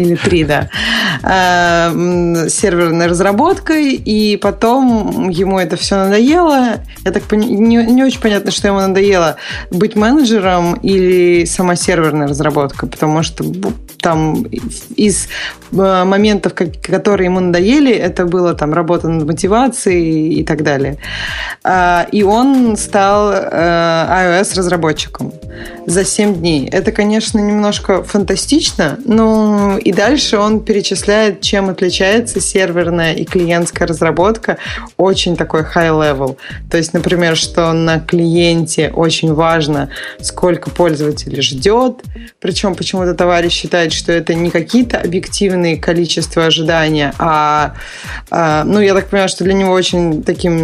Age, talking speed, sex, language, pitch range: 20-39, 120 wpm, female, Russian, 165-200 Hz